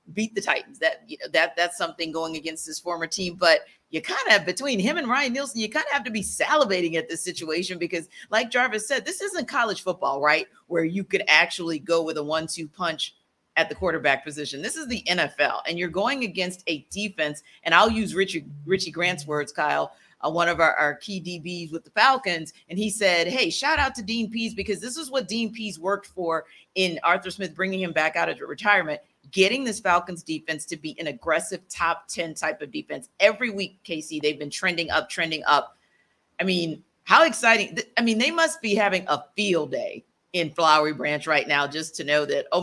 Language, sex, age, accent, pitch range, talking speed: English, female, 40-59, American, 160-215 Hz, 215 wpm